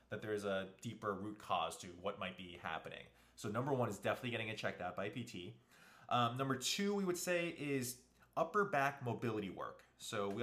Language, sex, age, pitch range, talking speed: English, male, 20-39, 100-135 Hz, 205 wpm